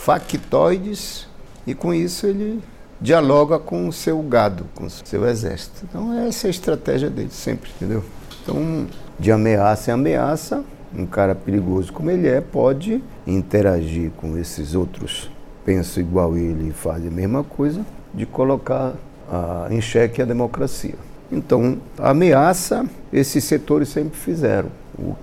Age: 60-79